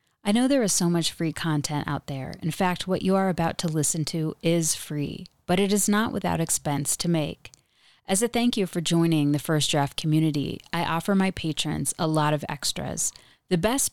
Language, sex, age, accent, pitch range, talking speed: English, female, 30-49, American, 150-180 Hz, 210 wpm